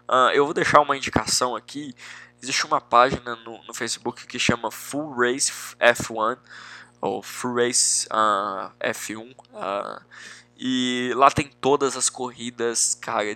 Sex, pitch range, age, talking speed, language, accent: male, 110-125 Hz, 20-39, 140 wpm, Portuguese, Brazilian